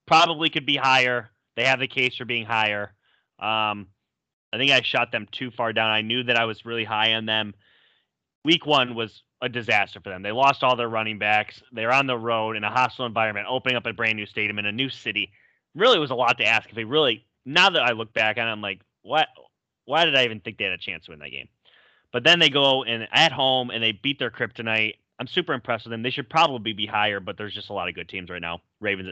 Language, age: English, 30-49